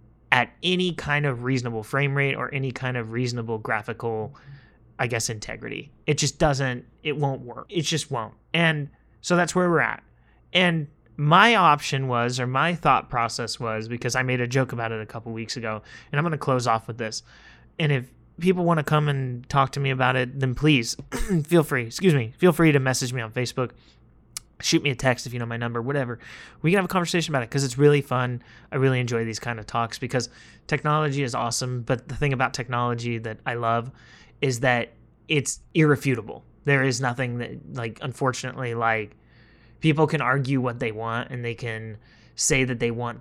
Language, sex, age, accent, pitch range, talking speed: English, male, 30-49, American, 115-140 Hz, 205 wpm